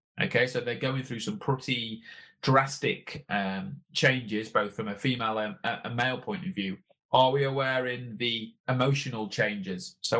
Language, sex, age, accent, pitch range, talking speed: English, male, 20-39, British, 110-135 Hz, 165 wpm